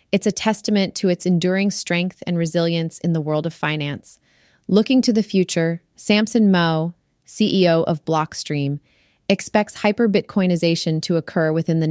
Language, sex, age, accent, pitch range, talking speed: English, female, 30-49, American, 160-200 Hz, 150 wpm